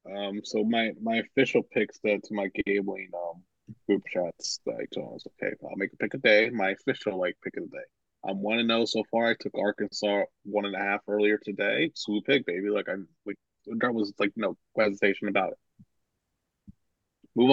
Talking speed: 205 wpm